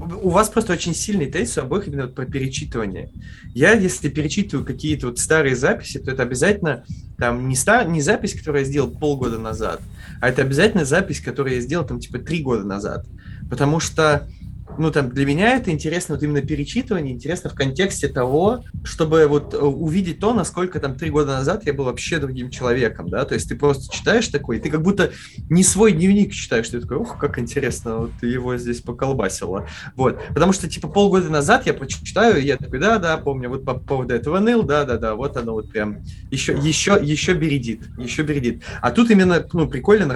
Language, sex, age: Russian, male, 20-39